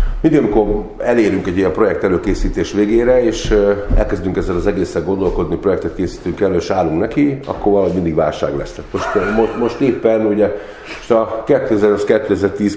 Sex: male